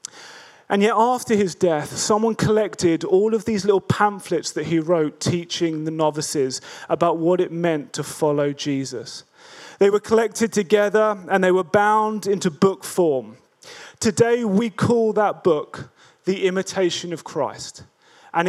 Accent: British